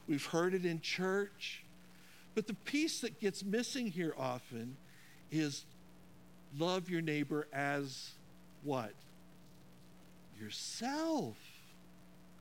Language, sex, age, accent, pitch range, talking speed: English, male, 60-79, American, 125-195 Hz, 95 wpm